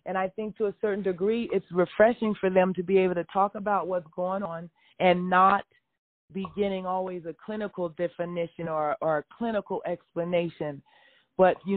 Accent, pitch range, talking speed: American, 175-210 Hz, 175 wpm